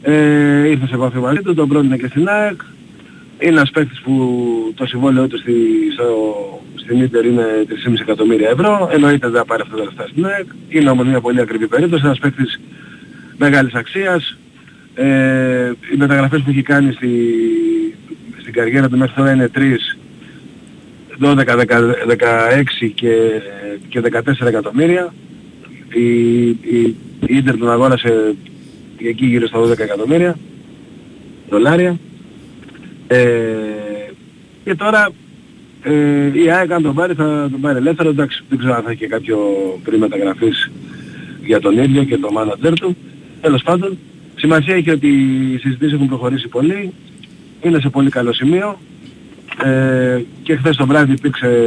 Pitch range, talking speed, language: 120-160 Hz, 145 wpm, Greek